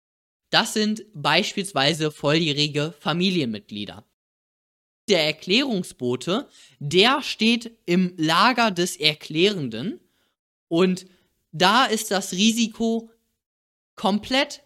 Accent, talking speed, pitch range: German, 80 wpm, 140-200 Hz